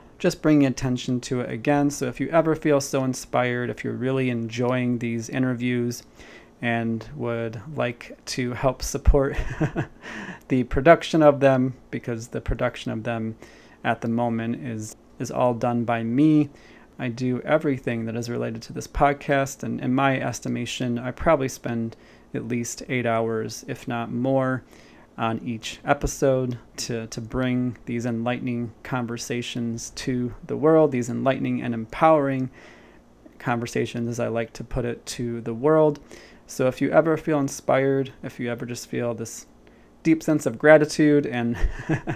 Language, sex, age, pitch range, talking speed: English, male, 30-49, 115-135 Hz, 155 wpm